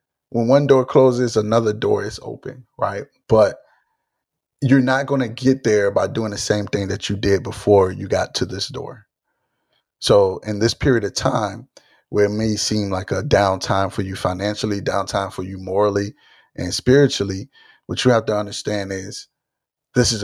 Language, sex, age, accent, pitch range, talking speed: English, male, 30-49, American, 100-115 Hz, 180 wpm